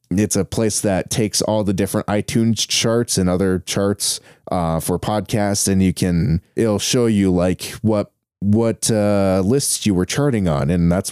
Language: English